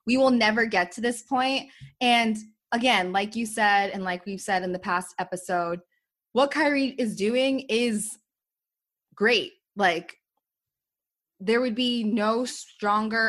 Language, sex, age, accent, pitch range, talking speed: English, female, 20-39, American, 180-220 Hz, 145 wpm